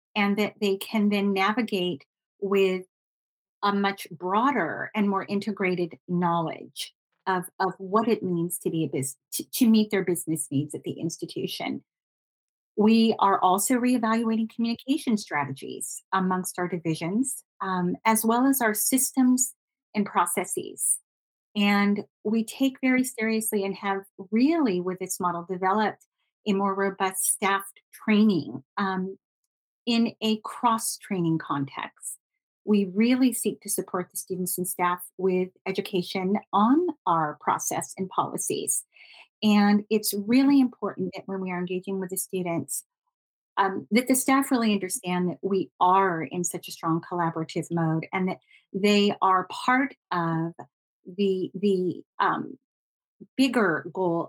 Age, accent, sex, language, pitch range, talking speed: 40-59, American, female, English, 180-220 Hz, 140 wpm